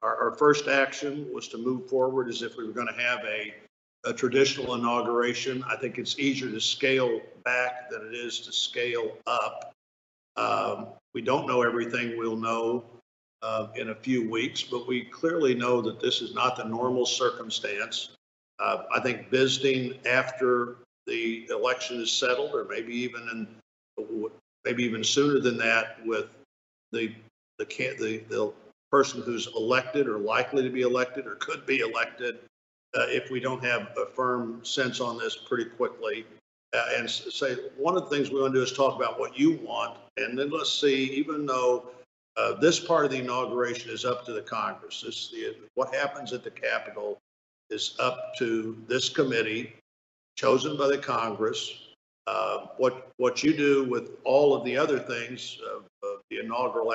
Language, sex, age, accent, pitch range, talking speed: English, male, 50-69, American, 120-150 Hz, 175 wpm